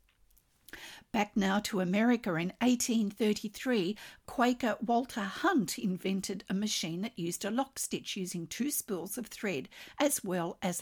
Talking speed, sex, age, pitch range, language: 140 wpm, female, 50-69, 180-235 Hz, English